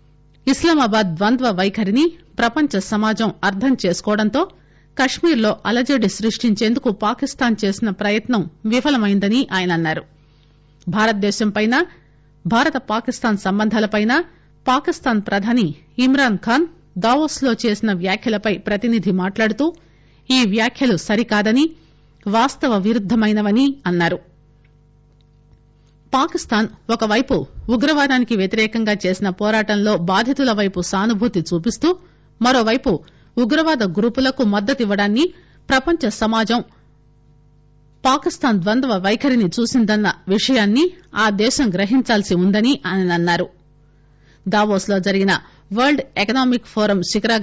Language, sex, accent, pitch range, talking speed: English, female, Indian, 185-245 Hz, 95 wpm